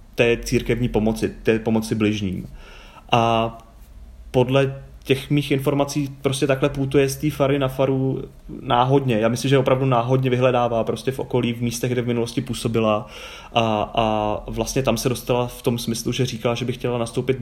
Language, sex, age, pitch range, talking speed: Czech, male, 30-49, 115-135 Hz, 170 wpm